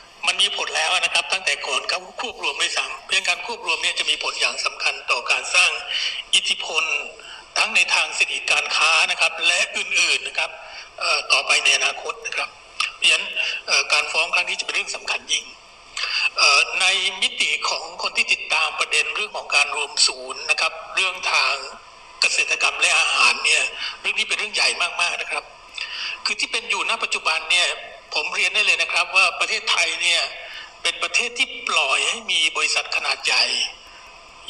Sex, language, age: male, Thai, 60-79